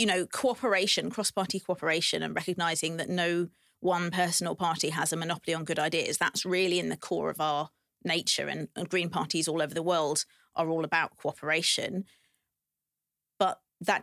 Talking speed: 175 wpm